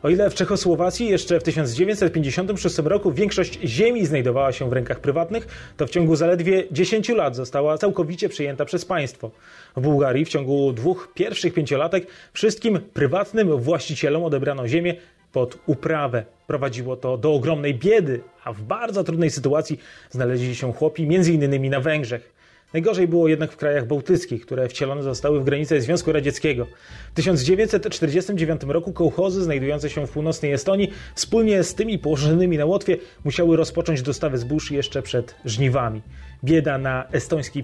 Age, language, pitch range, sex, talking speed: 30-49, Polish, 135-175 Hz, male, 150 wpm